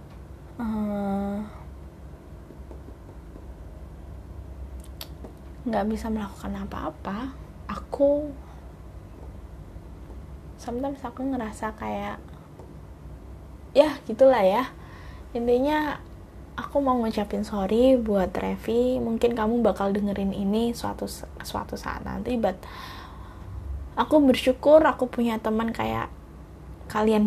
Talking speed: 80 wpm